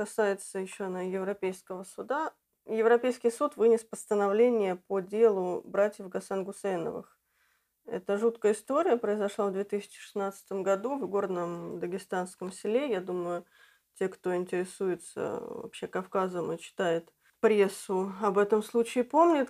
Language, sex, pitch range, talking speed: Russian, female, 190-225 Hz, 115 wpm